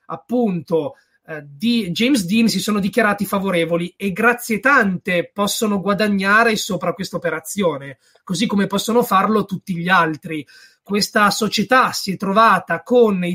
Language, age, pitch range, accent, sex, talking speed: Italian, 30-49, 175-220 Hz, native, male, 140 wpm